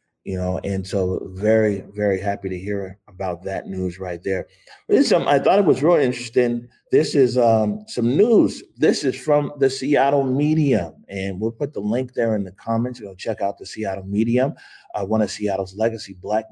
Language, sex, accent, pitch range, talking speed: English, male, American, 100-120 Hz, 195 wpm